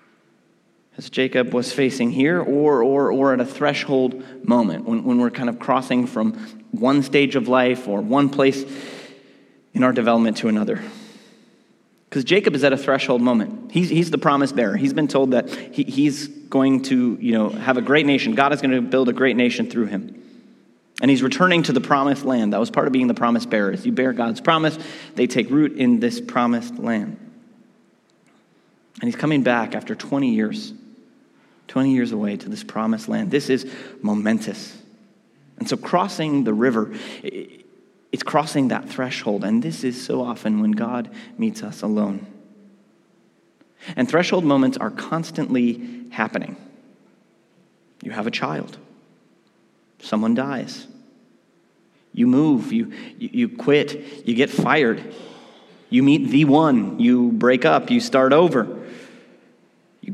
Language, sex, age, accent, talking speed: English, male, 30-49, American, 160 wpm